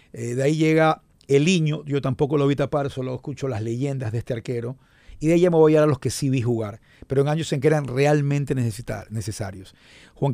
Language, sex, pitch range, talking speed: Spanish, male, 130-165 Hz, 245 wpm